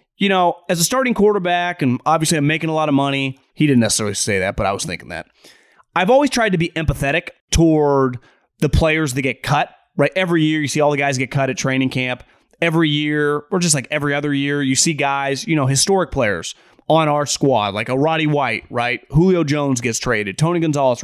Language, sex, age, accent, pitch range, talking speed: English, male, 30-49, American, 135-185 Hz, 220 wpm